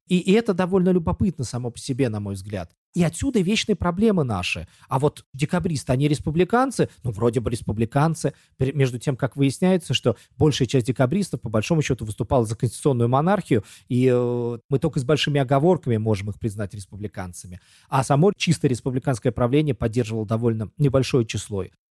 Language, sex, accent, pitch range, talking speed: Russian, male, native, 120-175 Hz, 160 wpm